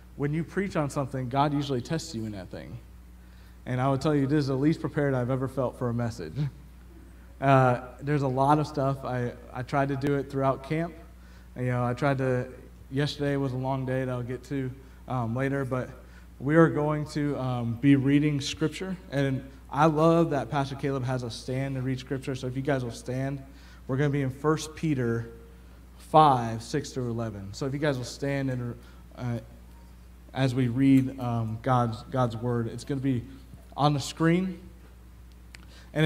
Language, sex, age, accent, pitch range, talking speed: English, male, 30-49, American, 110-145 Hz, 195 wpm